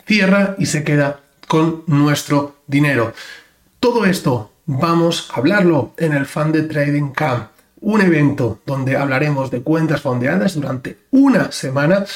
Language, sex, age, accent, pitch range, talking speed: Spanish, male, 30-49, Spanish, 145-180 Hz, 135 wpm